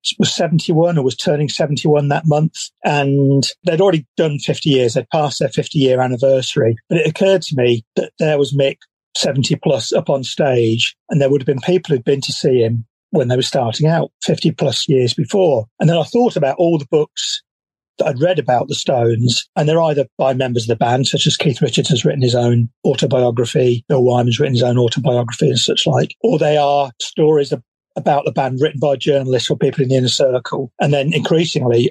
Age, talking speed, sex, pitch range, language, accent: 40-59, 215 wpm, male, 125-160 Hz, English, British